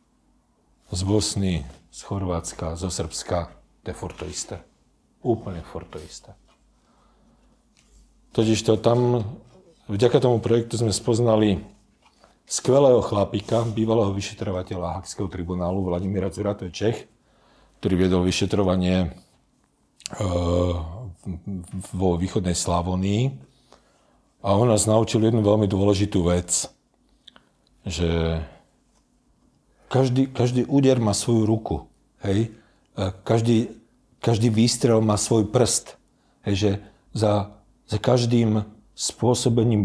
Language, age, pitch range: Slovak, 50-69, 95-115 Hz